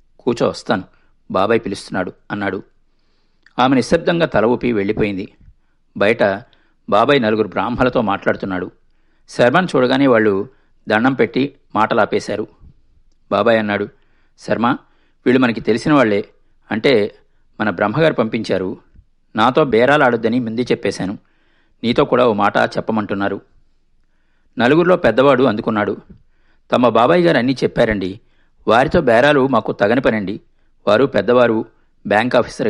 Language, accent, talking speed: Telugu, native, 105 wpm